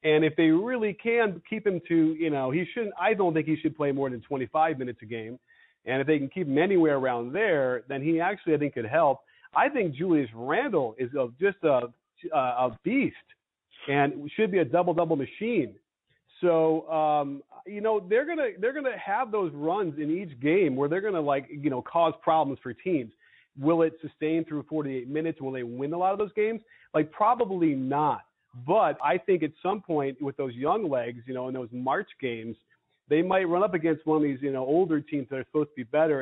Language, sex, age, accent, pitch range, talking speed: English, male, 40-59, American, 135-170 Hz, 215 wpm